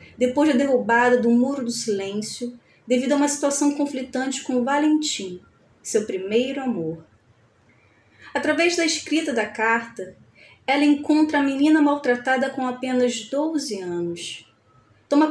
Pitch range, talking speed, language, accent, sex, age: 205-270 Hz, 125 wpm, Portuguese, Brazilian, female, 30-49